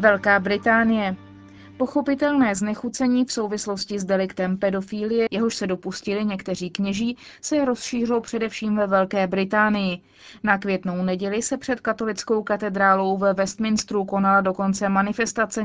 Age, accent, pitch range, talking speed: 20-39, native, 185-225 Hz, 125 wpm